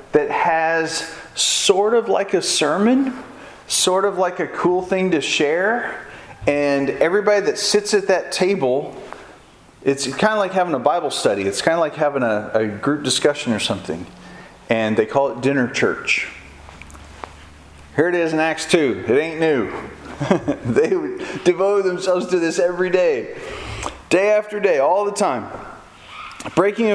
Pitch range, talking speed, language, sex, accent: 120-195 Hz, 155 wpm, English, male, American